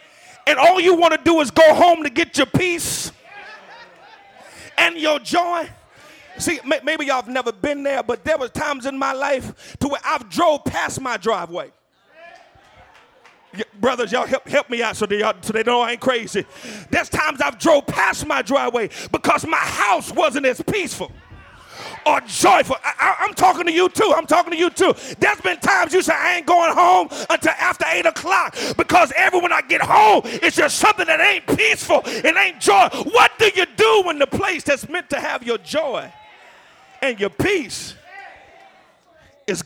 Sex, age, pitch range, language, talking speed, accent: male, 40-59, 275-355 Hz, English, 185 wpm, American